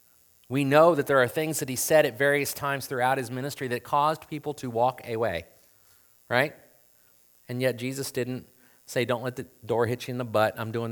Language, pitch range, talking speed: English, 100-135 Hz, 210 wpm